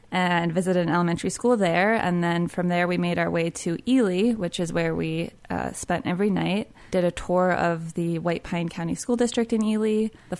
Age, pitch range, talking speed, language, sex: 20-39, 170-190 Hz, 215 wpm, English, female